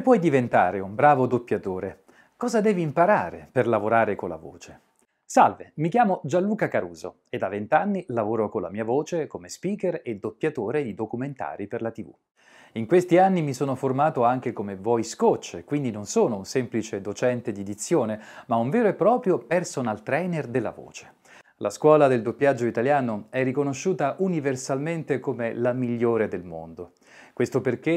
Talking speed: 165 wpm